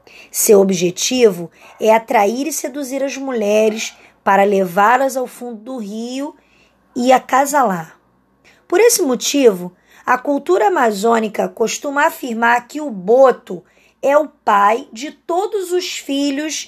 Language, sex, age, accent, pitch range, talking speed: Portuguese, female, 20-39, Brazilian, 205-290 Hz, 120 wpm